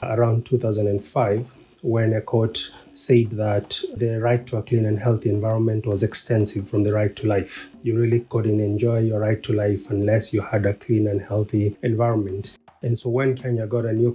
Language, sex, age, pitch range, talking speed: English, male, 30-49, 105-120 Hz, 190 wpm